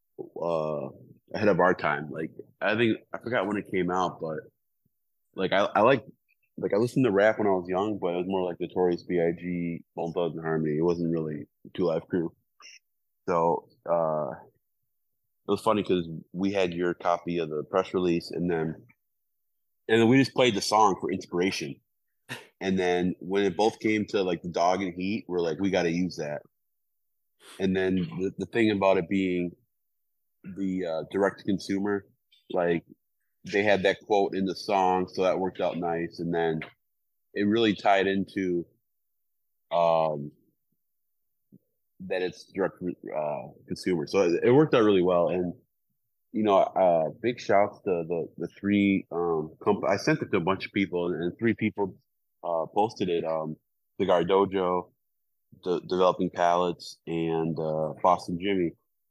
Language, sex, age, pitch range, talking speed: English, male, 20-39, 85-95 Hz, 170 wpm